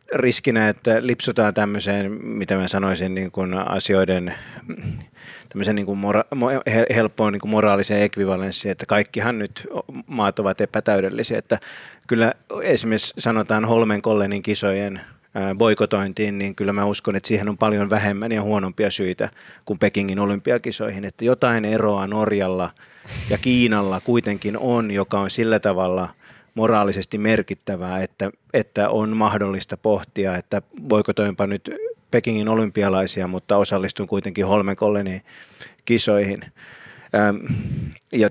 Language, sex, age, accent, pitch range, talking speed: Finnish, male, 30-49, native, 100-110 Hz, 120 wpm